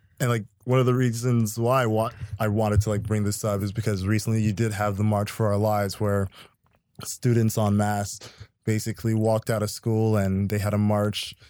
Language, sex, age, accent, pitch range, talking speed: English, male, 20-39, American, 105-120 Hz, 205 wpm